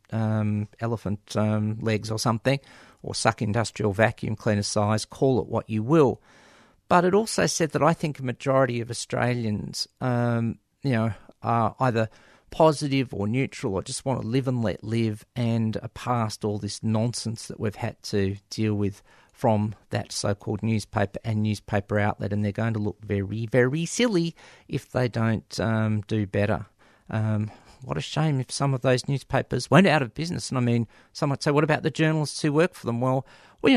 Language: English